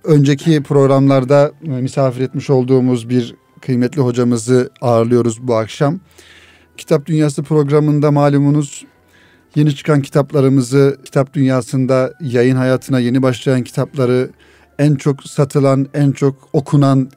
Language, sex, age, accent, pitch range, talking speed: Turkish, male, 40-59, native, 125-145 Hz, 110 wpm